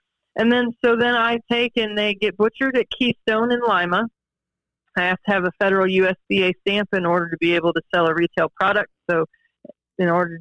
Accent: American